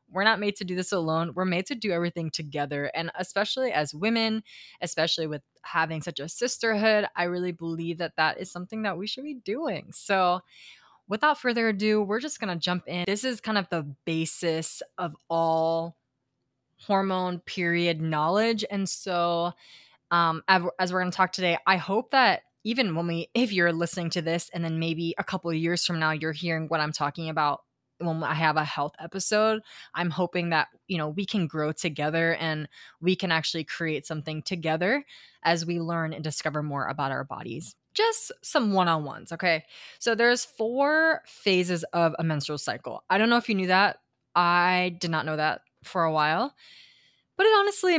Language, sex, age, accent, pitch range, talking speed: English, female, 20-39, American, 160-200 Hz, 190 wpm